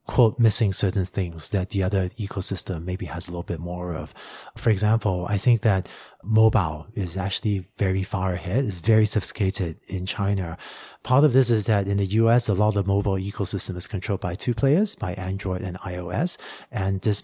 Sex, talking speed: male, 195 wpm